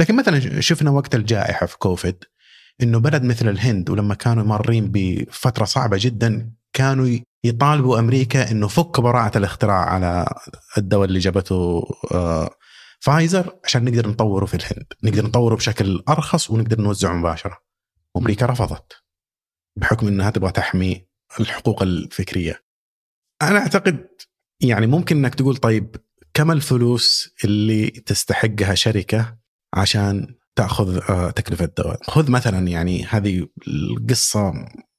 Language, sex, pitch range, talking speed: Arabic, male, 95-125 Hz, 120 wpm